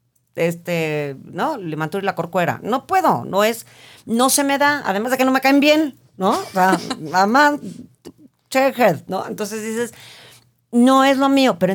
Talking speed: 175 wpm